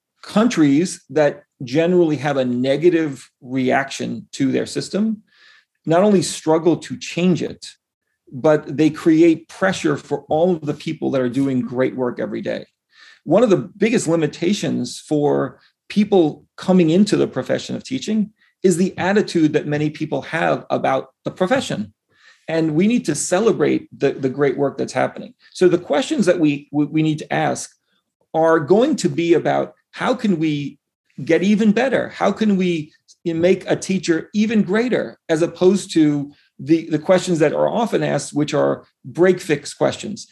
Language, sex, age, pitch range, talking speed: English, male, 40-59, 145-185 Hz, 160 wpm